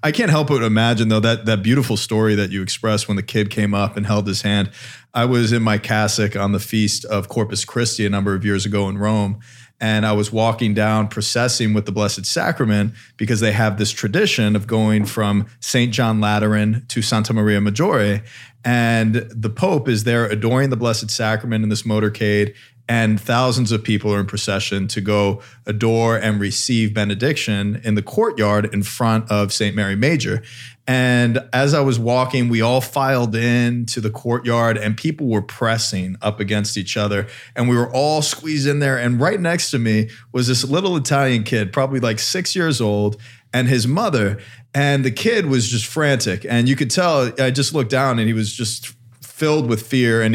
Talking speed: 200 wpm